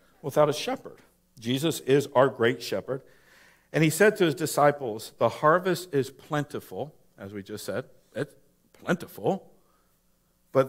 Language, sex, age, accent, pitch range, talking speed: English, male, 50-69, American, 110-145 Hz, 140 wpm